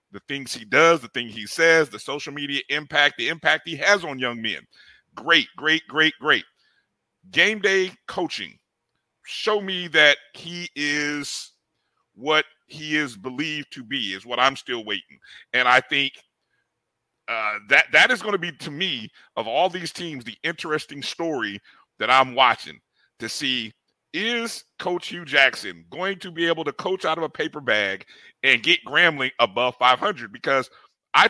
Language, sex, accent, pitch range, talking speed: English, male, American, 140-175 Hz, 170 wpm